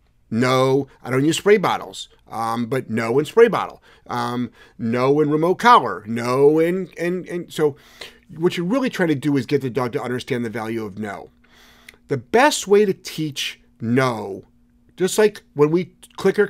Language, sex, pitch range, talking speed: English, male, 120-165 Hz, 190 wpm